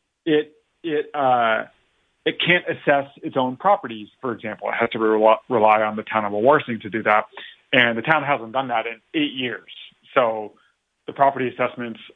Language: English